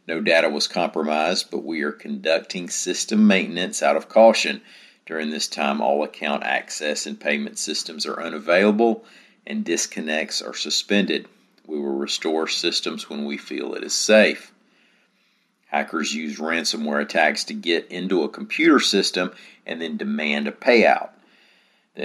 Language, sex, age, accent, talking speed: English, male, 50-69, American, 145 wpm